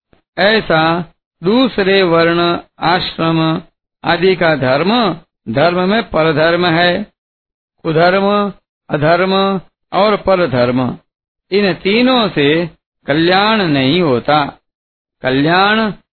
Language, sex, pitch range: Hindi, male, 160-200 Hz